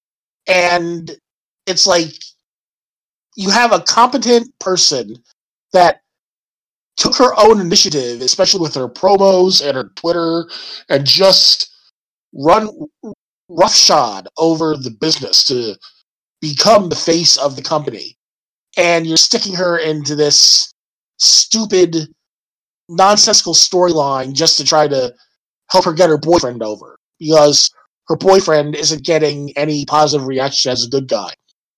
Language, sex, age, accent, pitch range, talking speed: English, male, 20-39, American, 140-185 Hz, 125 wpm